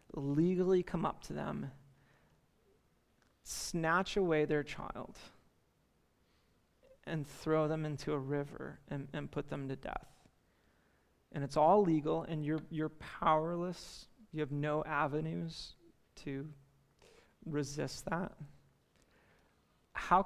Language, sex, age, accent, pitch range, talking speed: English, male, 30-49, American, 150-180 Hz, 110 wpm